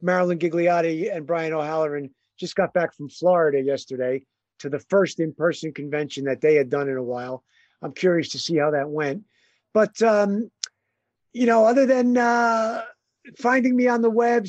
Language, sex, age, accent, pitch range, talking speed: English, male, 50-69, American, 165-205 Hz, 175 wpm